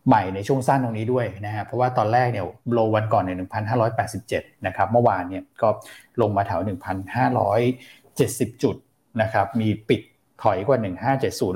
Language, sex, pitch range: Thai, male, 105-125 Hz